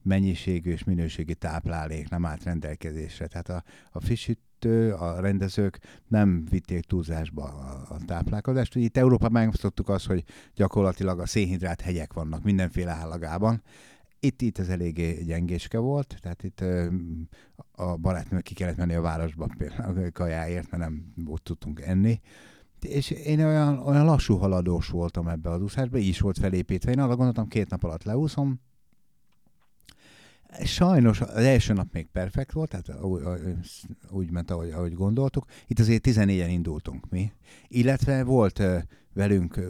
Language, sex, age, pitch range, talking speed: Hungarian, male, 60-79, 85-115 Hz, 140 wpm